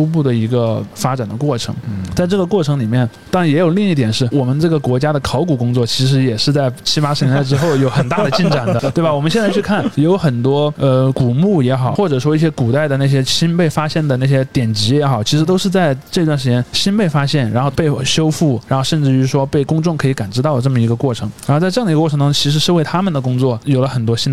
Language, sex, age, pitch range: Chinese, male, 20-39, 125-155 Hz